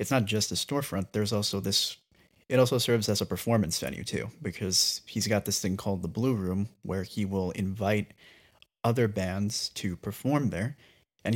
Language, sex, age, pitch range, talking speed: English, male, 30-49, 95-115 Hz, 185 wpm